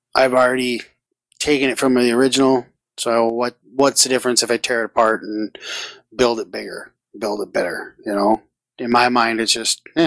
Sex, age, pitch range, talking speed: male, 20-39, 115-135 Hz, 190 wpm